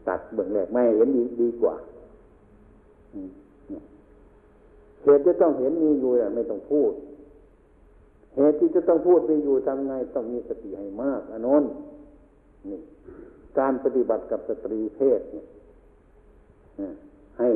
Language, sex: Thai, male